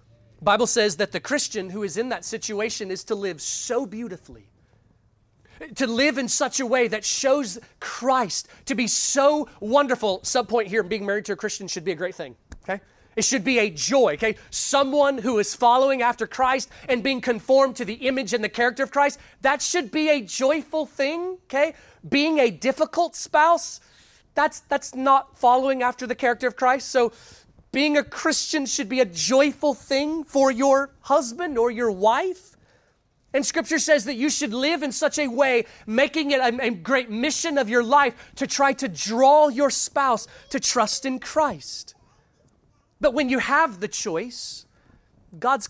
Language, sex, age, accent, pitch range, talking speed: English, male, 30-49, American, 220-280 Hz, 180 wpm